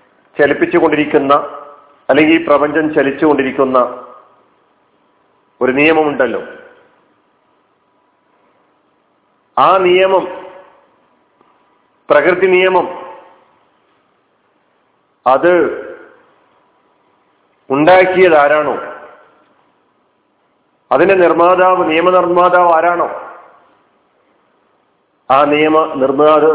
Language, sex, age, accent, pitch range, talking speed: Malayalam, male, 50-69, native, 150-185 Hz, 45 wpm